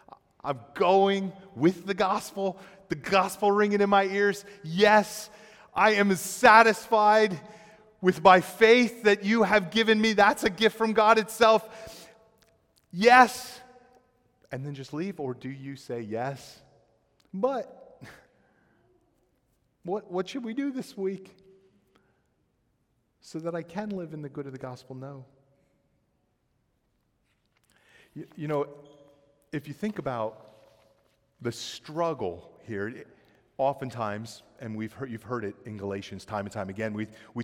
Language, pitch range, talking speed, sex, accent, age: English, 130-200 Hz, 135 wpm, male, American, 30-49